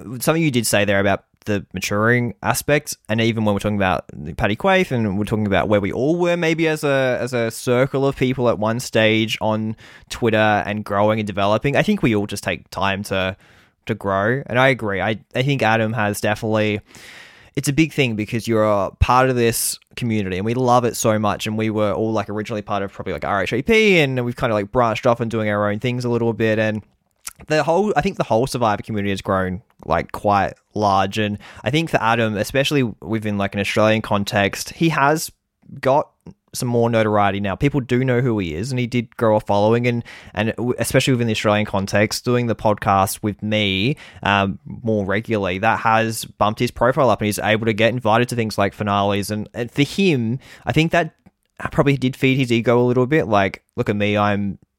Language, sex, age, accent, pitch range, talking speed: English, male, 20-39, Australian, 105-125 Hz, 220 wpm